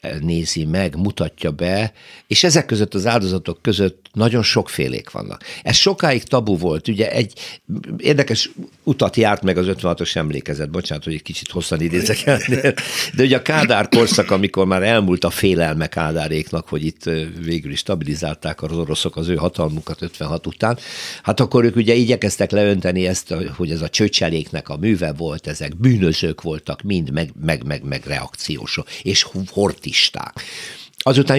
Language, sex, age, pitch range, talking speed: Hungarian, male, 60-79, 85-115 Hz, 155 wpm